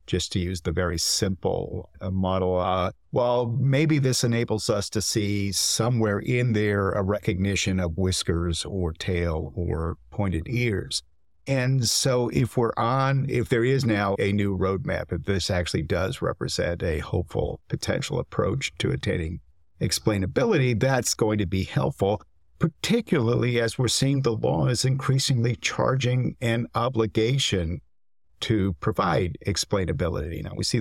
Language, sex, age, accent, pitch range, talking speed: English, male, 50-69, American, 95-125 Hz, 140 wpm